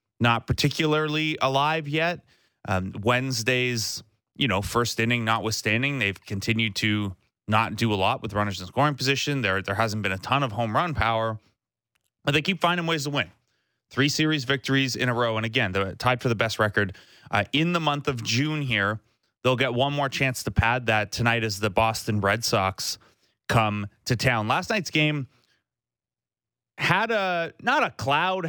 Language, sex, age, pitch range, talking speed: English, male, 30-49, 110-140 Hz, 180 wpm